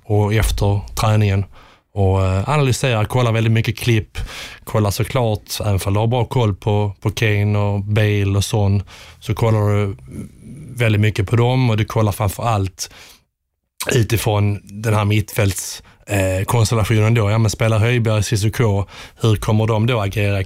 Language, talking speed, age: Swedish, 155 wpm, 20-39